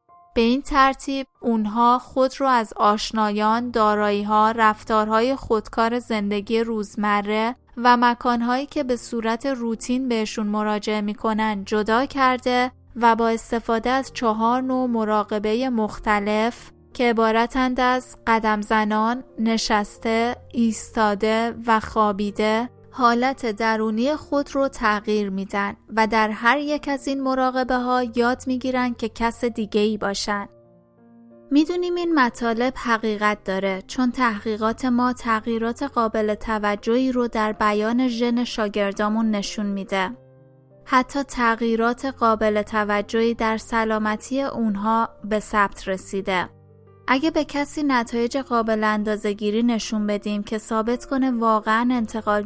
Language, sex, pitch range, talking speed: Persian, female, 215-250 Hz, 120 wpm